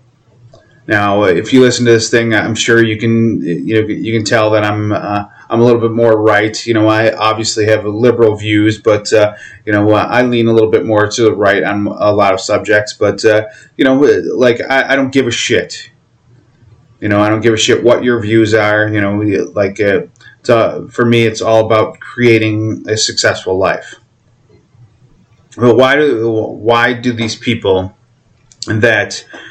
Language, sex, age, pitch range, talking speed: English, male, 30-49, 110-125 Hz, 195 wpm